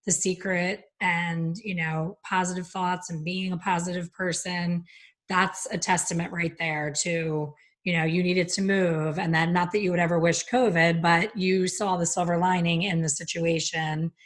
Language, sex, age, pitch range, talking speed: English, female, 30-49, 170-210 Hz, 175 wpm